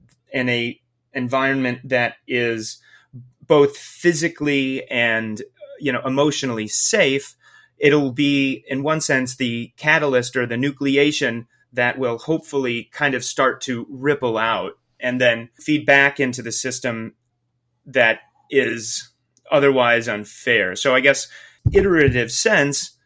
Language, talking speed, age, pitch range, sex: English, 125 wpm, 30-49, 120-140 Hz, male